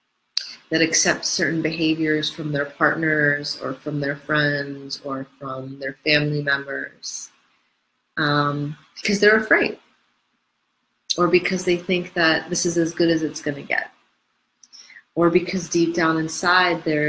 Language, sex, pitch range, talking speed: English, female, 145-165 Hz, 140 wpm